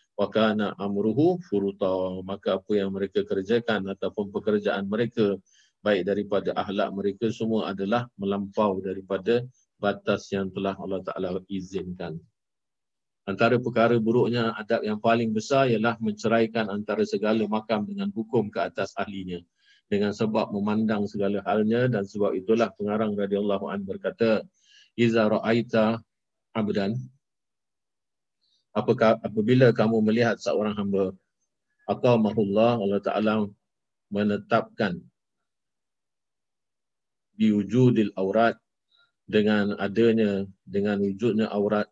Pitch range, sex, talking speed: 100-115 Hz, male, 105 wpm